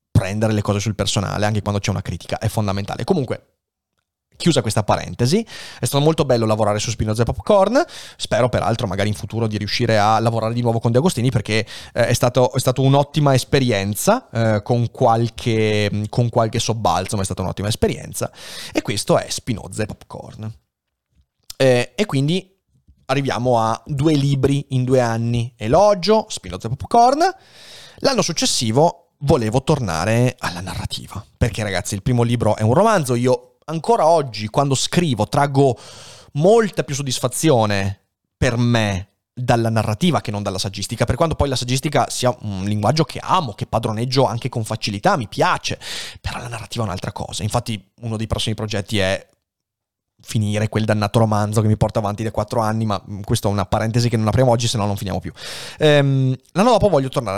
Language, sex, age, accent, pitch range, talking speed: Italian, male, 30-49, native, 105-130 Hz, 175 wpm